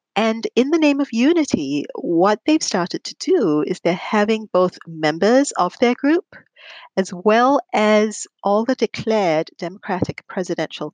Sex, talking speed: female, 150 wpm